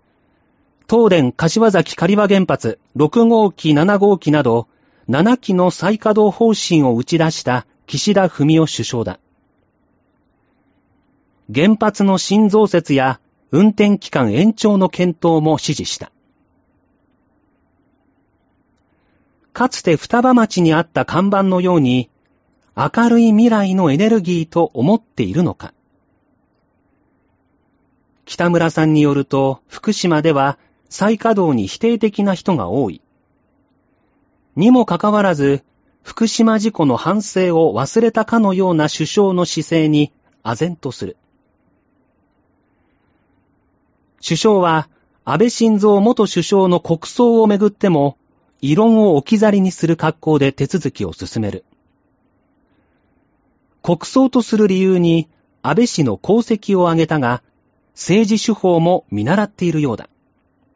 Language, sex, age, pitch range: Japanese, male, 40-59, 155-215 Hz